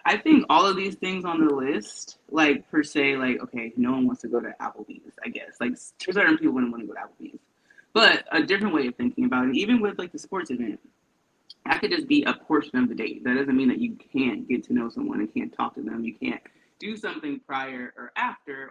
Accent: American